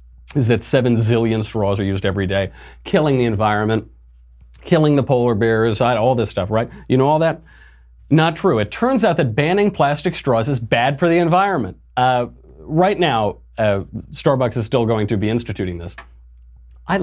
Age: 40-59